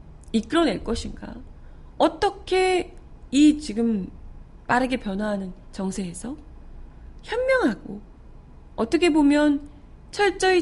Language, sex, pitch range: Korean, female, 200-295 Hz